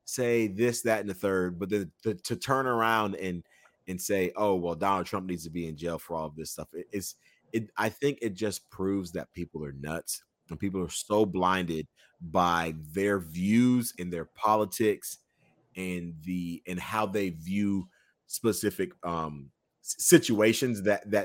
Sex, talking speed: male, 180 wpm